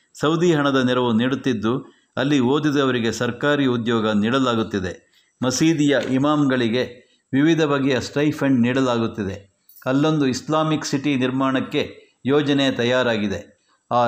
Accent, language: native, Kannada